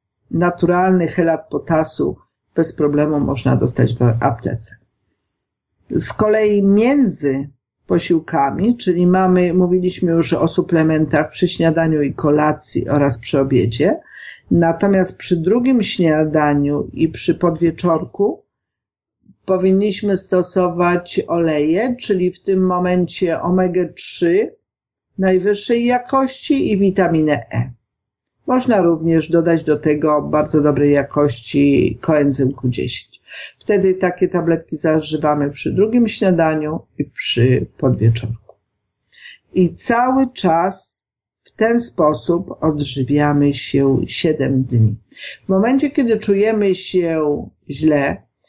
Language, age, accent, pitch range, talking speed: Polish, 50-69, native, 150-185 Hz, 105 wpm